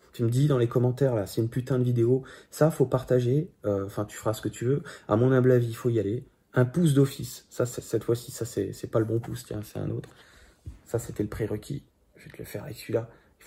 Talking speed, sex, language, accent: 275 wpm, male, French, French